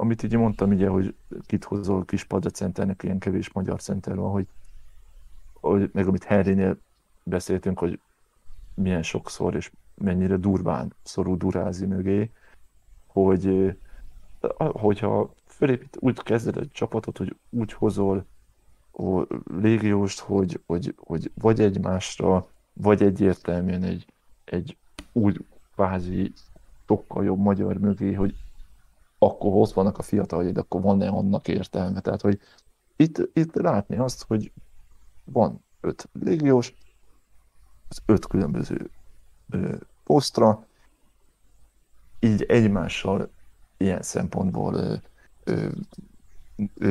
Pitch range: 95-105 Hz